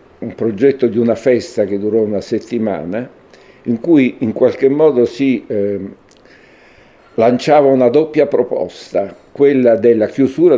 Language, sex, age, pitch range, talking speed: Italian, male, 60-79, 100-130 Hz, 130 wpm